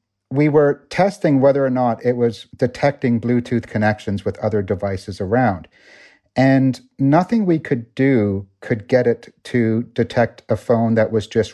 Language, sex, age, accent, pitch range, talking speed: English, male, 50-69, American, 110-135 Hz, 155 wpm